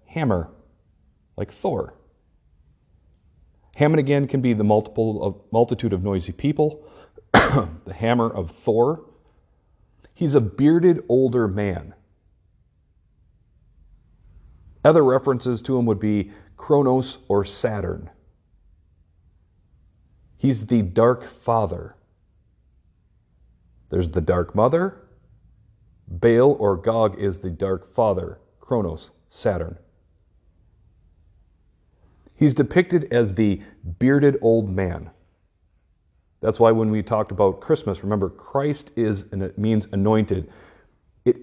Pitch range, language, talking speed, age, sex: 90-120 Hz, English, 105 wpm, 40-59, male